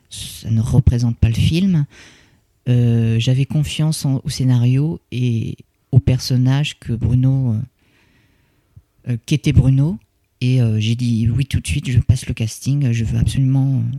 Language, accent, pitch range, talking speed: French, French, 115-150 Hz, 135 wpm